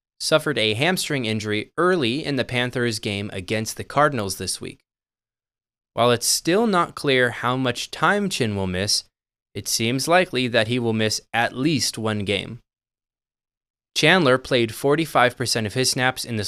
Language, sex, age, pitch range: English, male, 20-39, 105-140 Hz